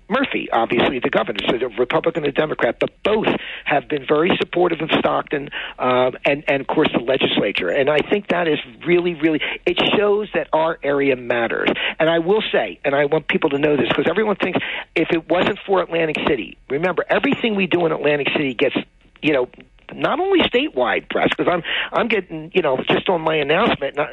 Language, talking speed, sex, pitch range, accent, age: English, 205 wpm, male, 145-195 Hz, American, 50-69